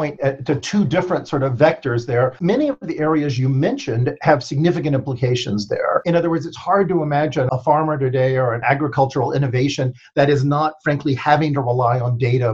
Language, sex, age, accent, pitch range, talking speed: English, male, 50-69, American, 130-160 Hz, 190 wpm